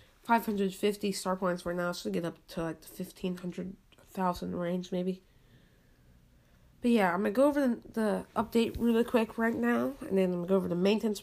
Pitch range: 175-215 Hz